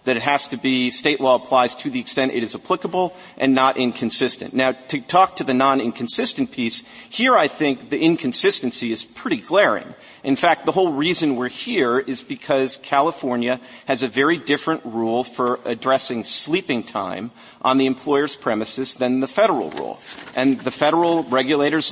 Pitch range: 125-160 Hz